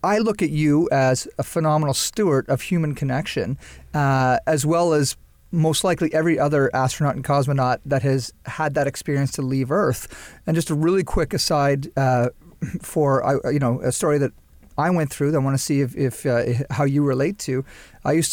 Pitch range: 135-170 Hz